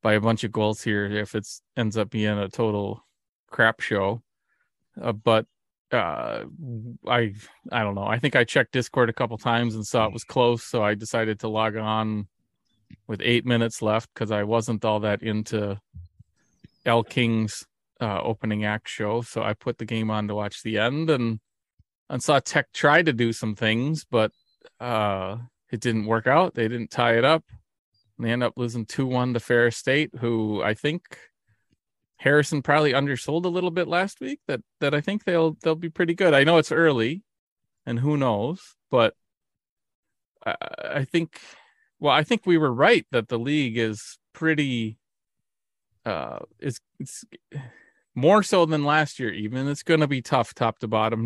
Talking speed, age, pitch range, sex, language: 185 wpm, 30-49, 110-140 Hz, male, English